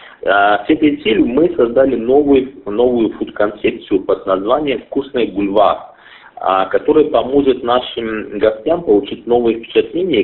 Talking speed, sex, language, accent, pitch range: 110 wpm, male, Russian, native, 110-165 Hz